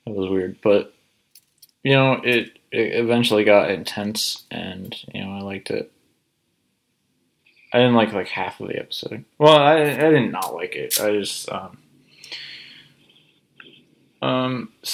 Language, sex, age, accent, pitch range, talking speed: English, male, 20-39, American, 100-120 Hz, 145 wpm